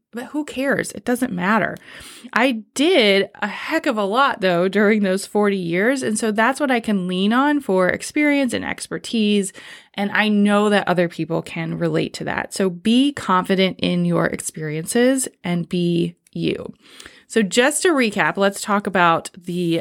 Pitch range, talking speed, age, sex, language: 175-235 Hz, 175 wpm, 20-39, female, English